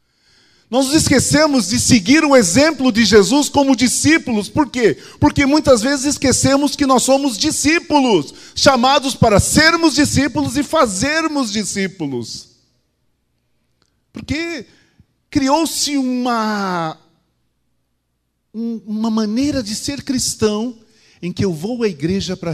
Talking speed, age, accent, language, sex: 115 wpm, 40-59, Brazilian, Portuguese, male